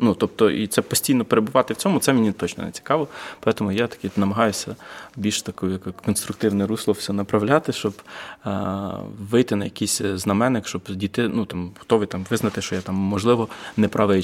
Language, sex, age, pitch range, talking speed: Ukrainian, male, 20-39, 100-135 Hz, 175 wpm